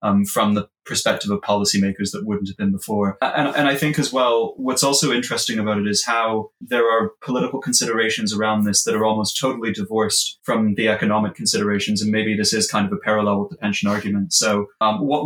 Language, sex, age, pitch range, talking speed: English, male, 20-39, 105-130 Hz, 210 wpm